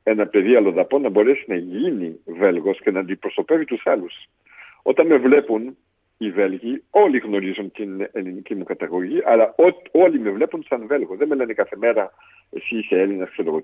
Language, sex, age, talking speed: Greek, male, 50-69, 175 wpm